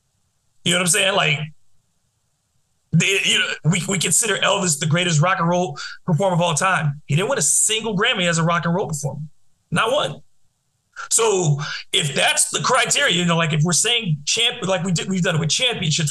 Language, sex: English, male